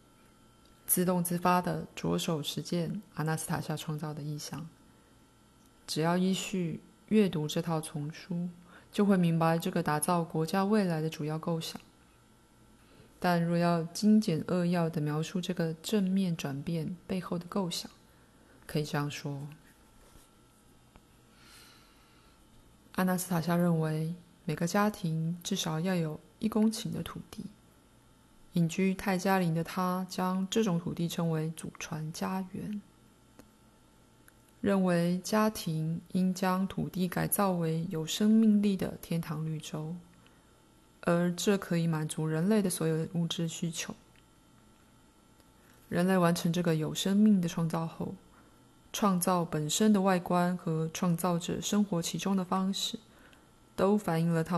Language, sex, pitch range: Chinese, female, 160-190 Hz